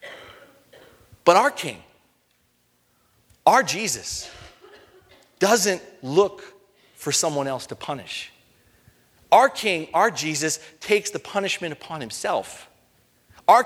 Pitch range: 175-245 Hz